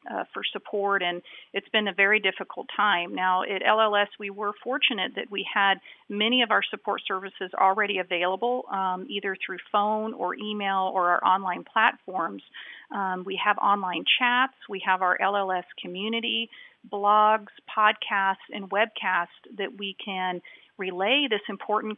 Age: 40-59